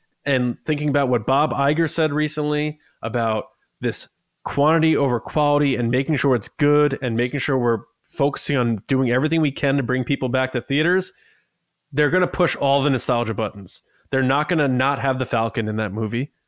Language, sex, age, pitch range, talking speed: English, male, 20-39, 120-150 Hz, 195 wpm